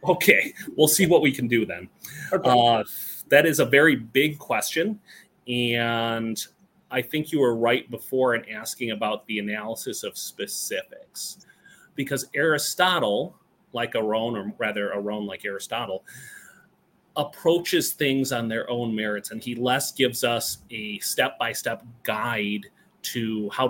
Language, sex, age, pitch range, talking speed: English, male, 30-49, 115-170 Hz, 135 wpm